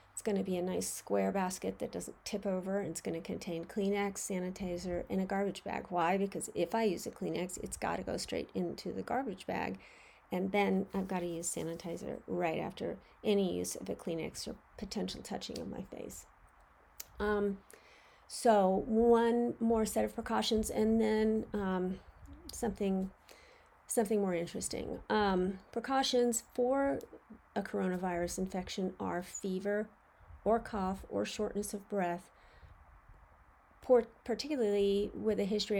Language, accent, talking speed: English, American, 145 wpm